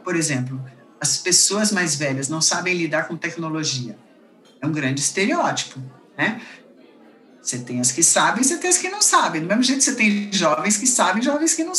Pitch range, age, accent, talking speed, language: 160-235 Hz, 50-69, Brazilian, 195 wpm, Portuguese